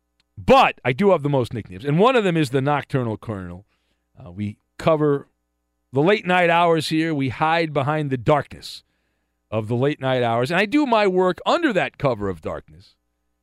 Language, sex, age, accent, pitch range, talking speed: English, male, 40-59, American, 100-160 Hz, 180 wpm